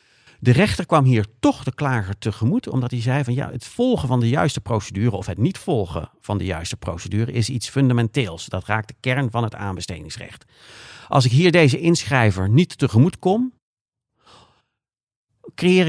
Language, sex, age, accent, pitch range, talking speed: Dutch, male, 50-69, Dutch, 95-130 Hz, 175 wpm